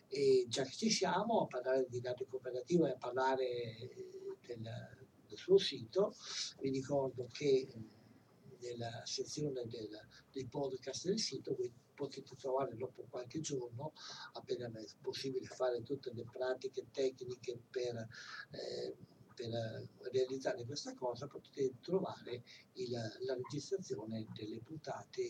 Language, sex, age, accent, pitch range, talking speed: Italian, male, 60-79, native, 130-195 Hz, 125 wpm